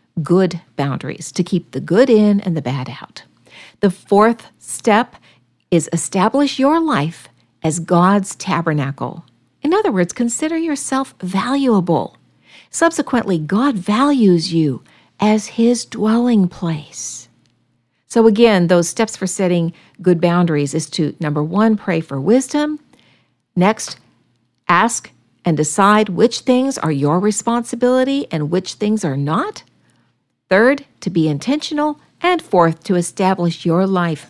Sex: female